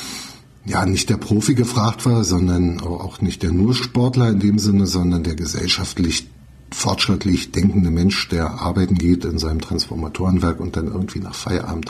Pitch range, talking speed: 95-115 Hz, 160 wpm